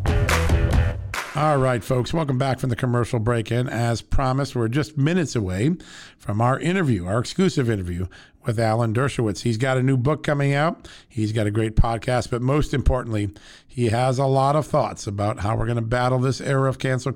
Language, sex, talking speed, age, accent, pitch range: English, male, 195 wpm, 50-69, American, 105-130 Hz